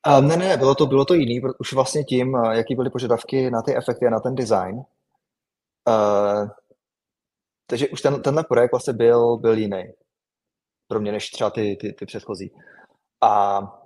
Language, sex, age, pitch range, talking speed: Czech, male, 20-39, 105-120 Hz, 170 wpm